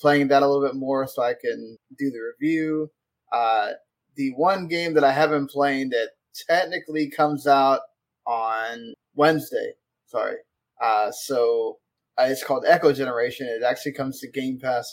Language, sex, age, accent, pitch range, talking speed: English, male, 20-39, American, 135-160 Hz, 165 wpm